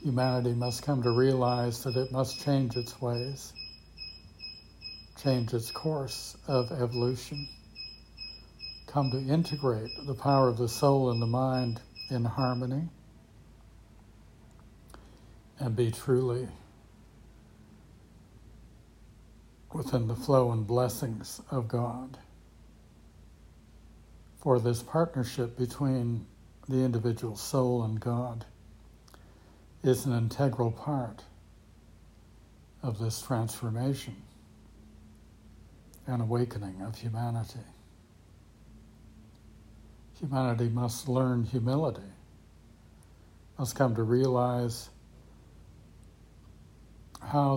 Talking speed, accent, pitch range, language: 85 wpm, American, 105-130 Hz, English